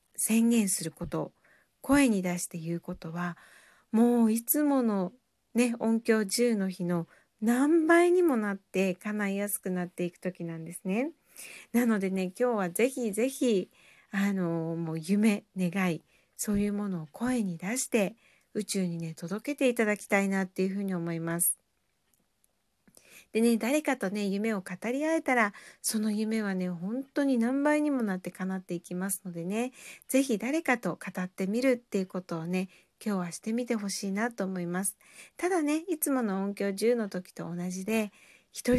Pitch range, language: 180-235 Hz, Japanese